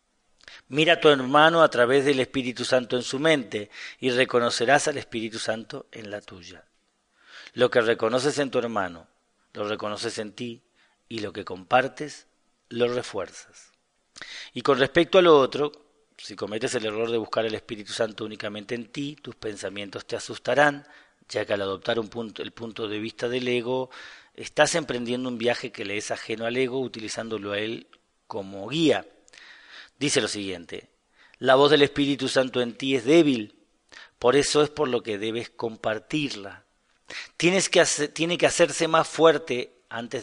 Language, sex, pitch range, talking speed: Spanish, male, 110-145 Hz, 170 wpm